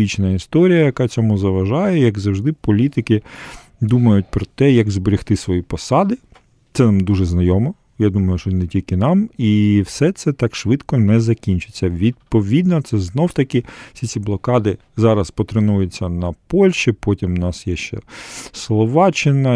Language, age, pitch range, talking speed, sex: Ukrainian, 40-59, 95-120 Hz, 145 wpm, male